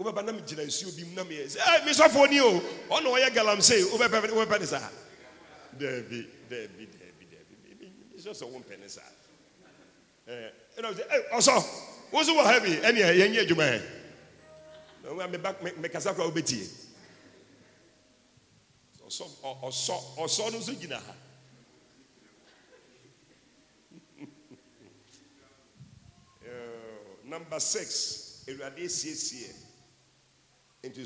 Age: 50-69